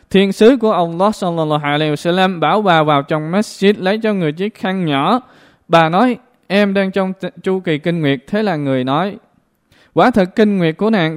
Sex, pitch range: male, 150-195 Hz